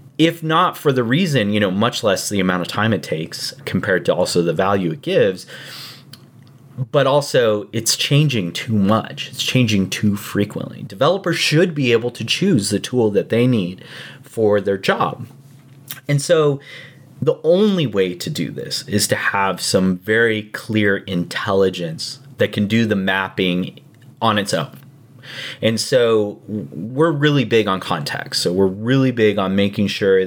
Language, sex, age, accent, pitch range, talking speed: English, male, 30-49, American, 105-140 Hz, 165 wpm